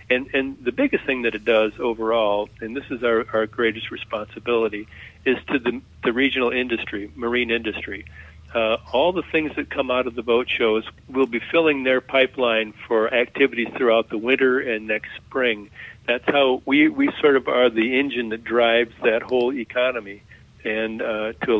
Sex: male